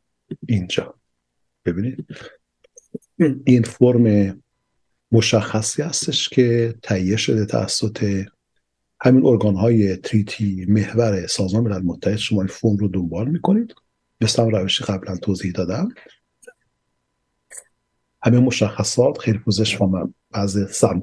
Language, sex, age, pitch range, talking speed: Persian, male, 50-69, 95-115 Hz, 105 wpm